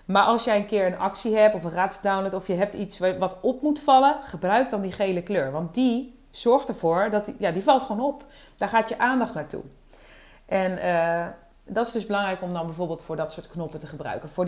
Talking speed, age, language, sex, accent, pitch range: 230 wpm, 30-49, English, female, Dutch, 175-225 Hz